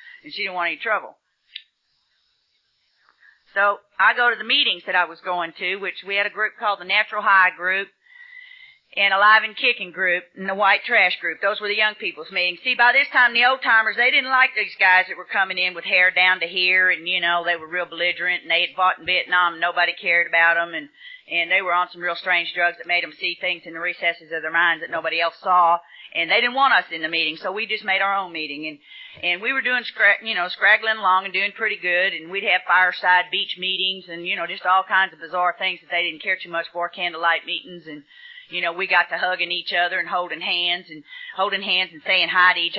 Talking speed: 250 wpm